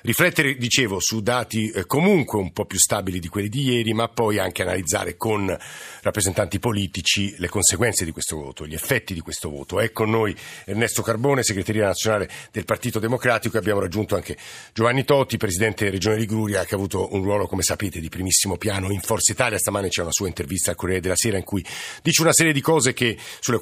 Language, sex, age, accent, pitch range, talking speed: Italian, male, 50-69, native, 100-125 Hz, 205 wpm